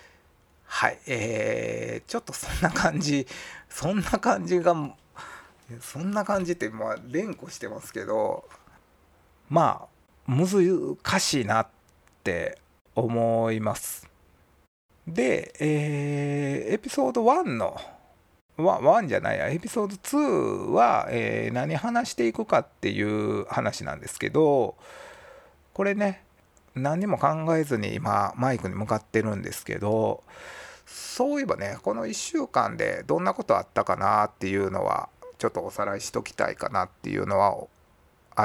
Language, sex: Japanese, male